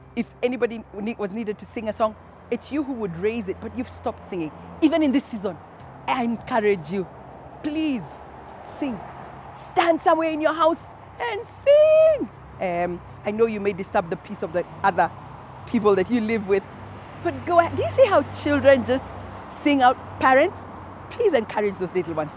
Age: 40-59